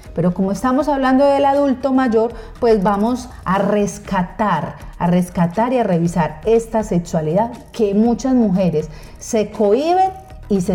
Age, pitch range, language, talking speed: 30-49, 165-220 Hz, Spanish, 140 wpm